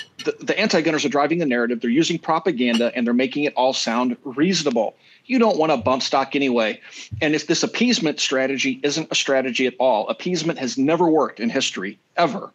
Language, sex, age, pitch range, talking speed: English, male, 40-59, 135-180 Hz, 195 wpm